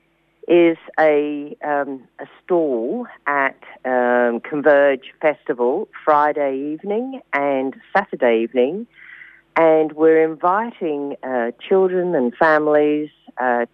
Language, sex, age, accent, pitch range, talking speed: English, female, 40-59, Australian, 135-165 Hz, 95 wpm